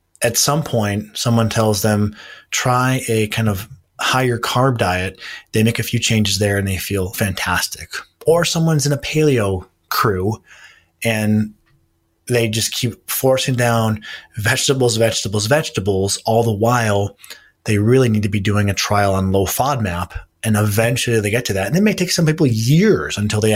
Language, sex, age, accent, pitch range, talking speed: English, male, 30-49, American, 100-120 Hz, 170 wpm